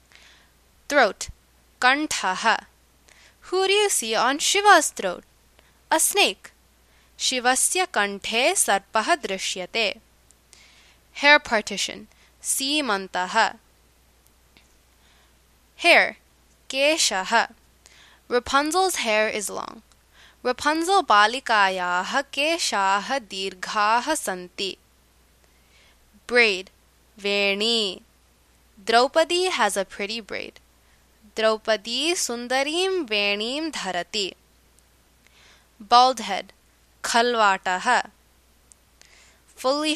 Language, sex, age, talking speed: English, female, 20-39, 65 wpm